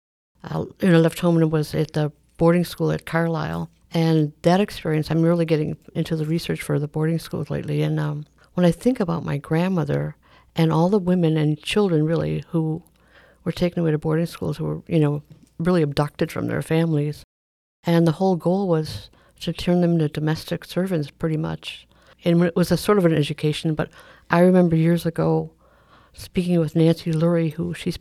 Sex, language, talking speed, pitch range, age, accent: female, English, 190 wpm, 150-170 Hz, 60-79, American